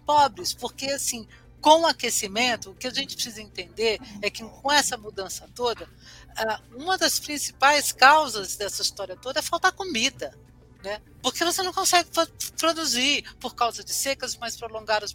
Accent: Brazilian